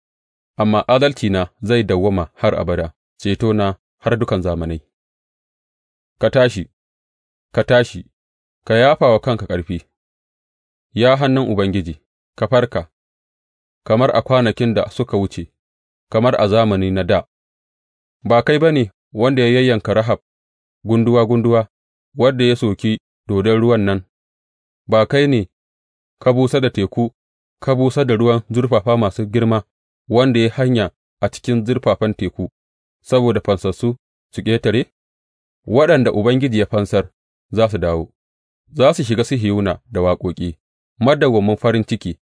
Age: 30-49